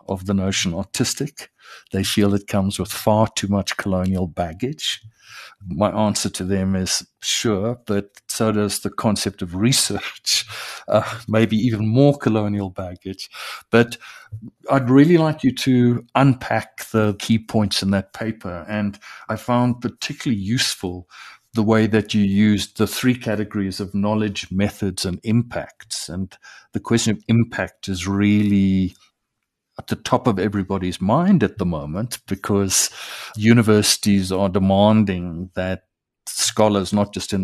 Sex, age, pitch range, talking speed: male, 60-79, 95-115 Hz, 140 wpm